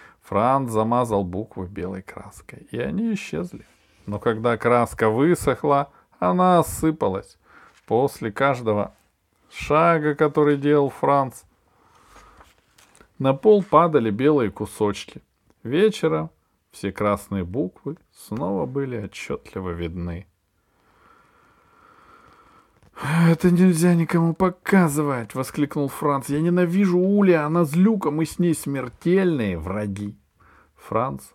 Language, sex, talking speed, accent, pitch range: Russian, male, 100 wpm, native, 105-165 Hz